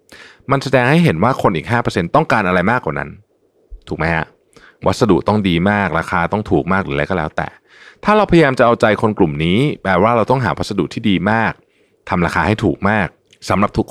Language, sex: Thai, male